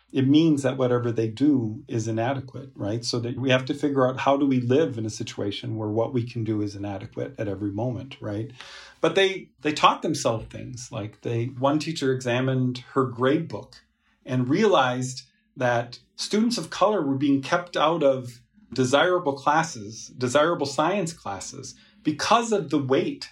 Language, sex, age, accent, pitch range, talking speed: English, male, 40-59, American, 125-155 Hz, 170 wpm